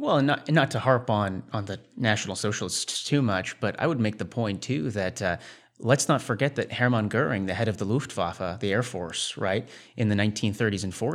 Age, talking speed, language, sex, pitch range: 30-49, 225 wpm, English, male, 100-125 Hz